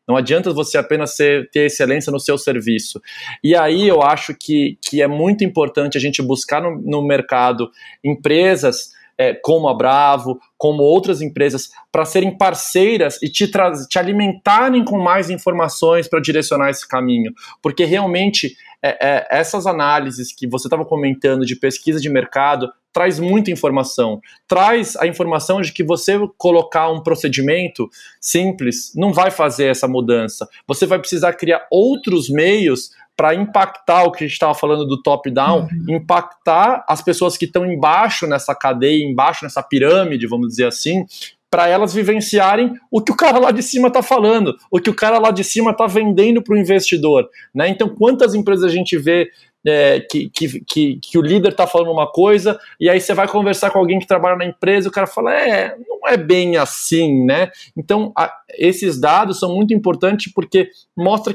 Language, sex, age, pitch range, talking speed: Portuguese, male, 20-39, 145-195 Hz, 170 wpm